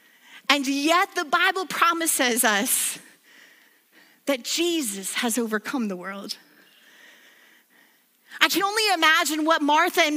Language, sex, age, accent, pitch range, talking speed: English, female, 40-59, American, 280-375 Hz, 110 wpm